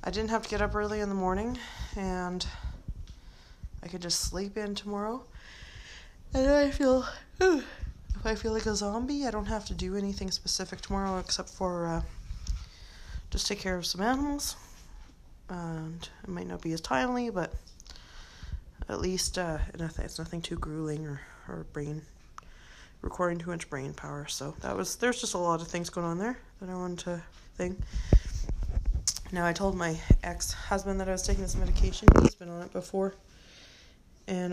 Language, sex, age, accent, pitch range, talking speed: English, female, 20-39, American, 170-225 Hz, 175 wpm